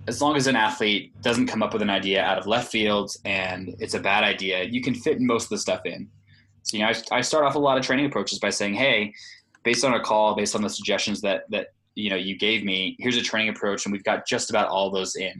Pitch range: 95-115 Hz